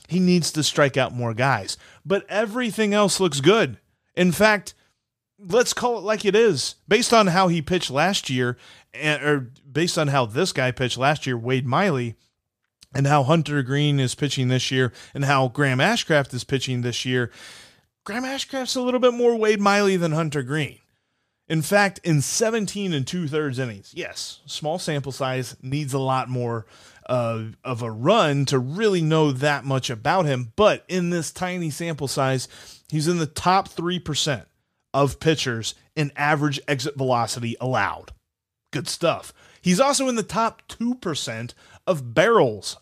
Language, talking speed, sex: English, 165 wpm, male